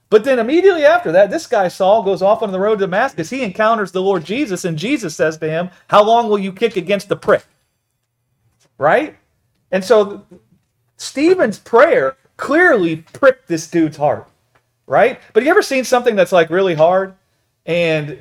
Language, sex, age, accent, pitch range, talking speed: English, male, 40-59, American, 140-210 Hz, 180 wpm